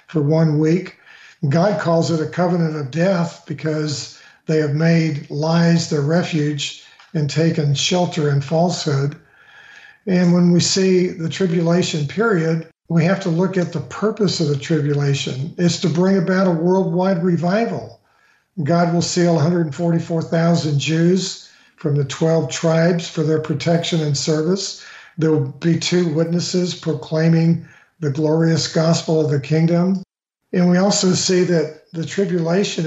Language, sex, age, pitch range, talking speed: English, male, 50-69, 155-175 Hz, 145 wpm